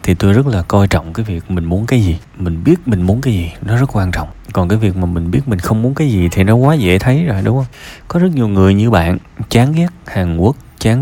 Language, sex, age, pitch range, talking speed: Vietnamese, male, 20-39, 90-115 Hz, 285 wpm